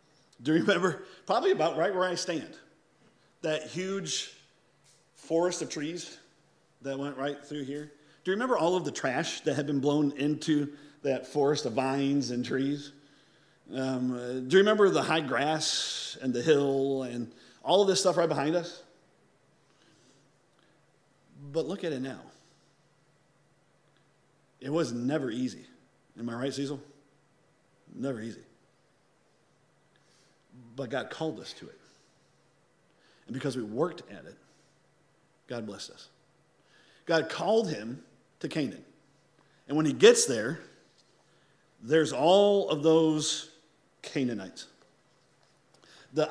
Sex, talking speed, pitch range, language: male, 130 wpm, 140-165 Hz, English